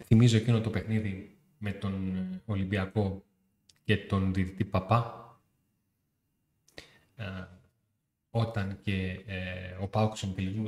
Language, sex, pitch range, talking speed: Greek, male, 100-115 Hz, 95 wpm